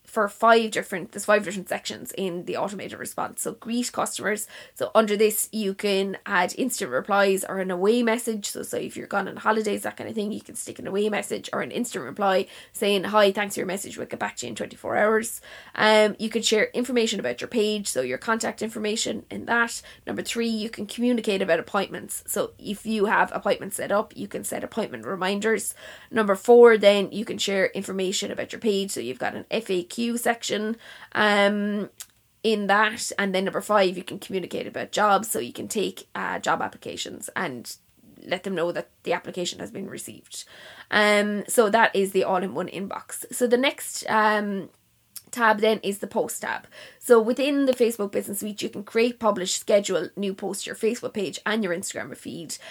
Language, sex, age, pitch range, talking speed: English, female, 20-39, 195-225 Hz, 205 wpm